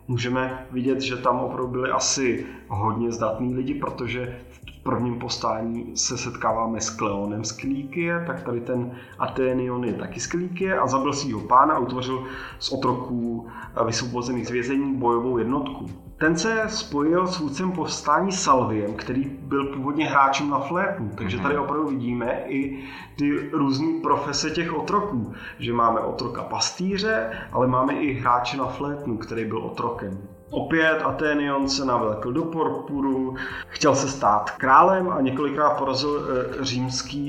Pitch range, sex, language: 120-145 Hz, male, Czech